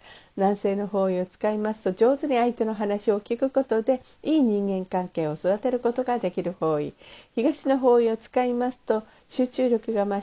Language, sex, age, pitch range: Japanese, female, 50-69, 190-245 Hz